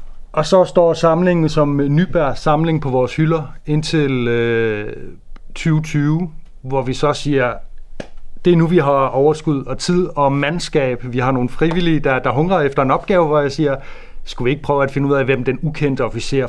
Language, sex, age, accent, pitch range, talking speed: Danish, male, 30-49, native, 120-155 Hz, 190 wpm